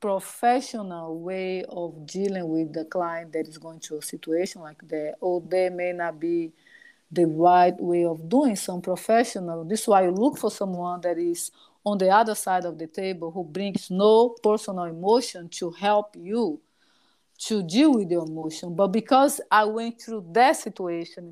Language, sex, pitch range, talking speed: English, female, 175-215 Hz, 175 wpm